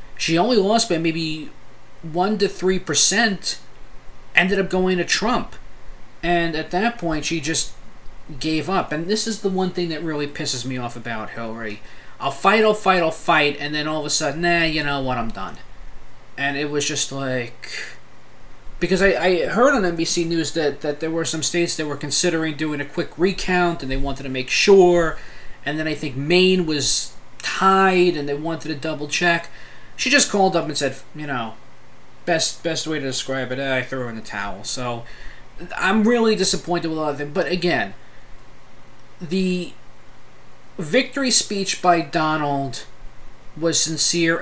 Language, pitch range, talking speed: English, 145-180 Hz, 180 wpm